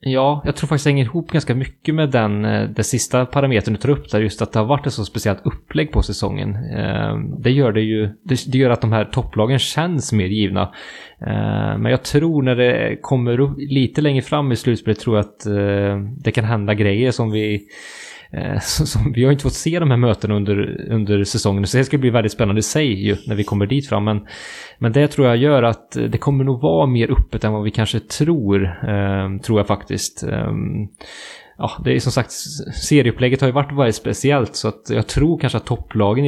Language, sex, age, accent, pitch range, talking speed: English, male, 20-39, Norwegian, 105-130 Hz, 205 wpm